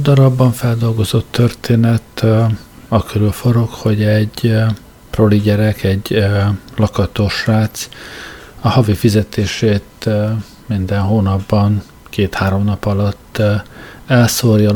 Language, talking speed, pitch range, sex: Hungarian, 85 wpm, 100-110 Hz, male